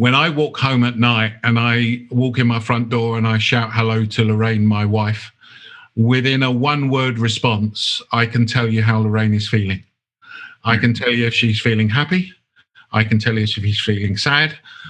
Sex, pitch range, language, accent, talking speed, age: male, 110-130 Hz, English, British, 200 wpm, 50-69